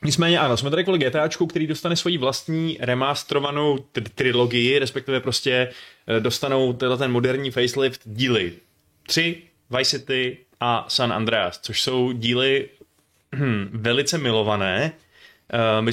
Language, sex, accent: Czech, male, native